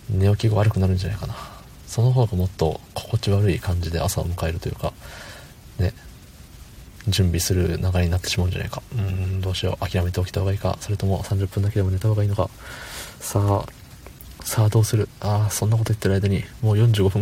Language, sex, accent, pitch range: Japanese, male, native, 90-110 Hz